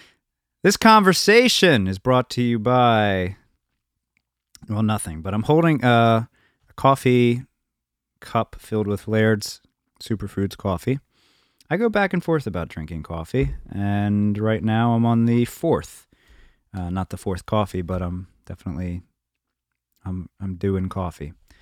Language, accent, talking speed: English, American, 135 wpm